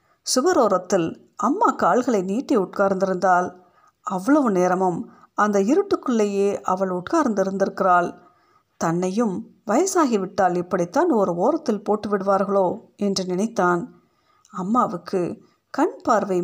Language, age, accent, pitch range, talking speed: Tamil, 50-69, native, 180-245 Hz, 85 wpm